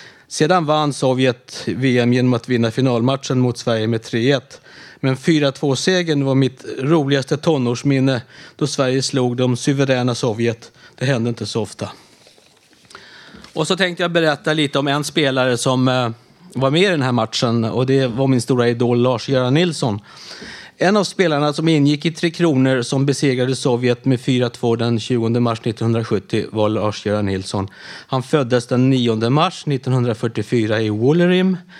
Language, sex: Swedish, male